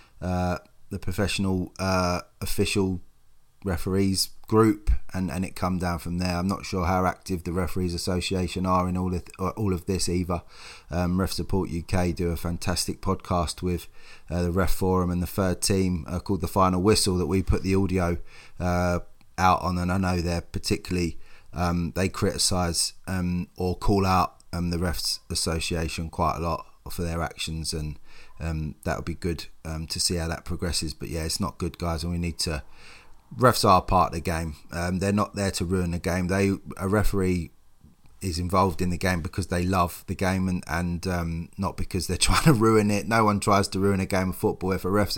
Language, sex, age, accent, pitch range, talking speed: English, male, 20-39, British, 85-95 Hz, 200 wpm